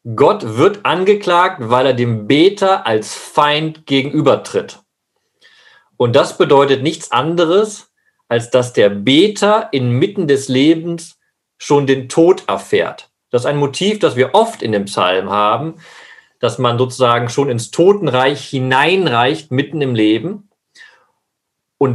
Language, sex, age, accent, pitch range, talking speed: German, male, 40-59, German, 130-210 Hz, 130 wpm